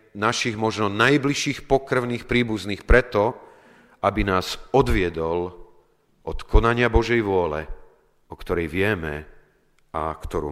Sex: male